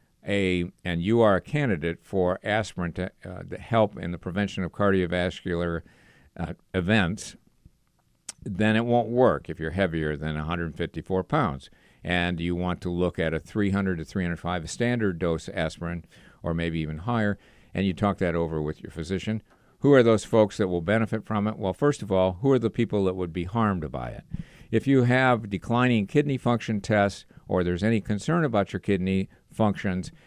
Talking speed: 185 wpm